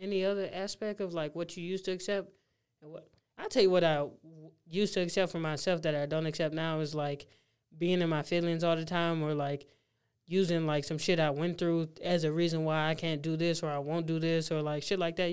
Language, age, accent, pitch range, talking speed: English, 20-39, American, 150-180 Hz, 240 wpm